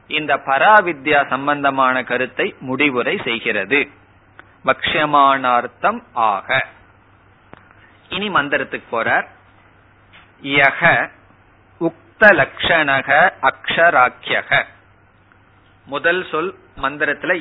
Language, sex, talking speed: Tamil, male, 50 wpm